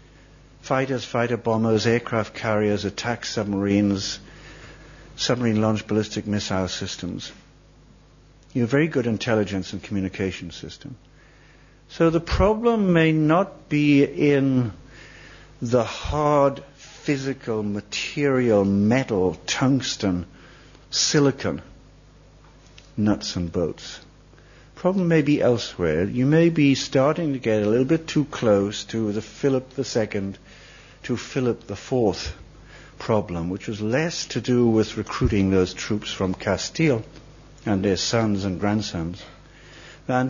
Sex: male